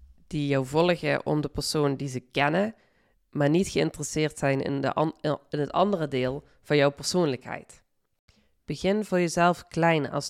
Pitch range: 140-175 Hz